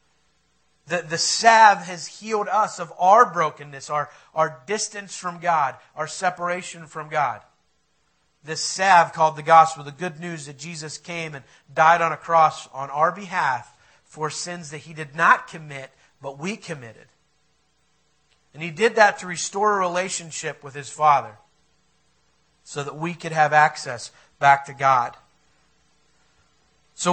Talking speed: 150 wpm